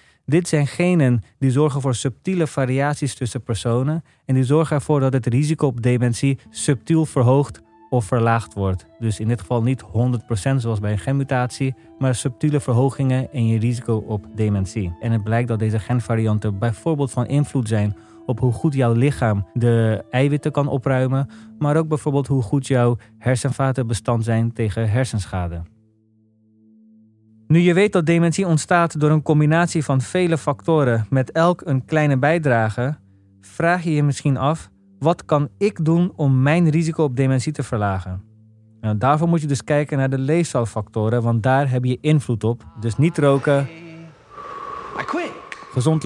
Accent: Dutch